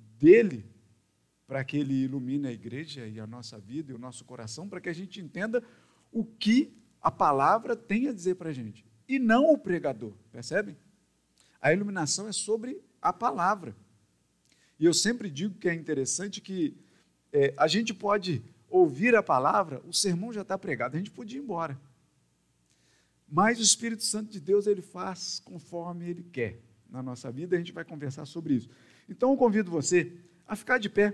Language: Portuguese